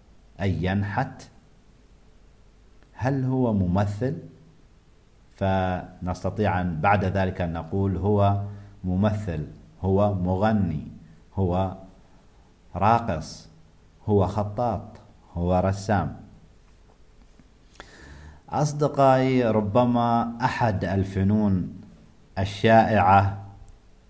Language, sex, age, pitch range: Arabic, male, 50-69, 90-110 Hz